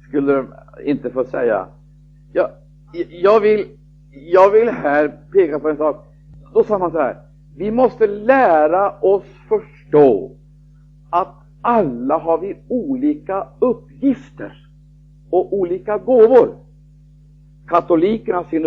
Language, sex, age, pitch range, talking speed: Swedish, male, 60-79, 150-185 Hz, 115 wpm